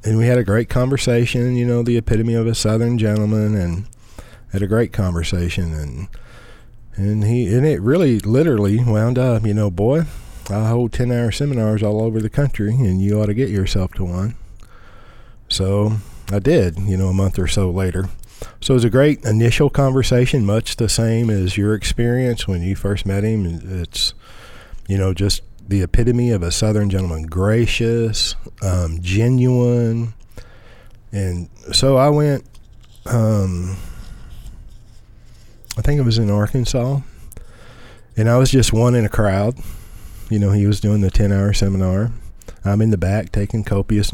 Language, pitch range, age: English, 95-120 Hz, 50-69